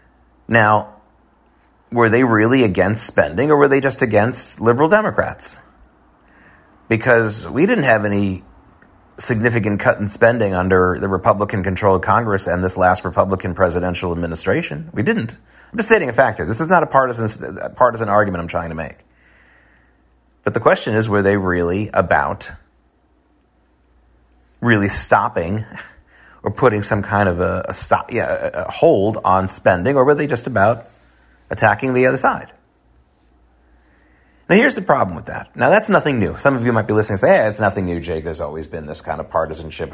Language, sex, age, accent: English, male, 30-49, American